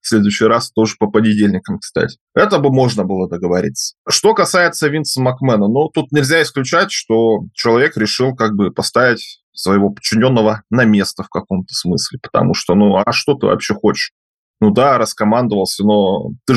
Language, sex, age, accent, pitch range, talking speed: Russian, male, 20-39, native, 105-125 Hz, 165 wpm